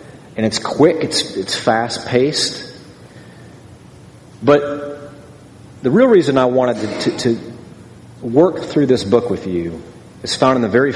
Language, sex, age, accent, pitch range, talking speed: English, male, 40-59, American, 120-150 Hz, 140 wpm